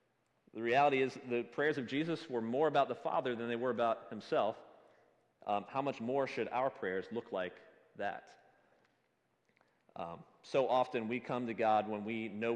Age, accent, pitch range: 30-49, American, 110-135 Hz